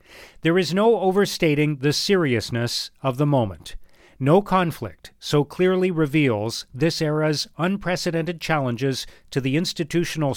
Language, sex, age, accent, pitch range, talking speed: English, male, 40-59, American, 130-170 Hz, 120 wpm